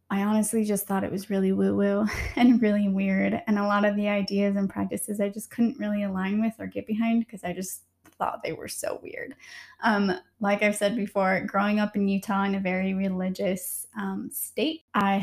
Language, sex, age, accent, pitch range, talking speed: English, female, 20-39, American, 195-230 Hz, 205 wpm